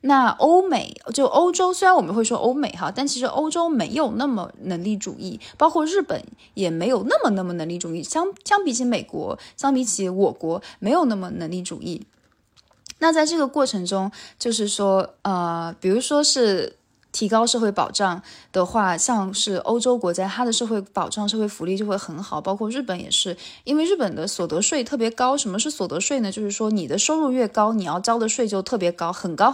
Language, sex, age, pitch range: Chinese, female, 20-39, 190-270 Hz